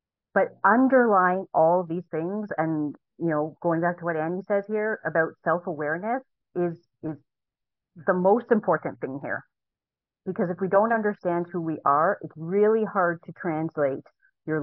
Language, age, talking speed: English, 30-49, 160 wpm